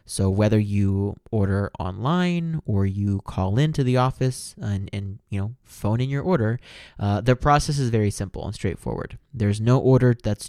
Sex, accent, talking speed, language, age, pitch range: male, American, 175 wpm, English, 20-39, 105-135 Hz